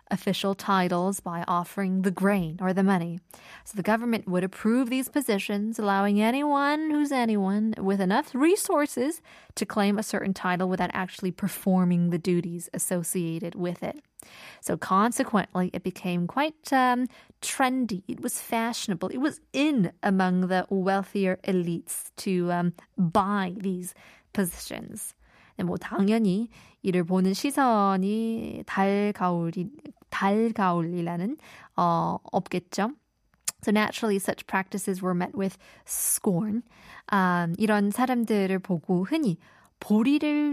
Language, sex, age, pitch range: Korean, female, 20-39, 185-225 Hz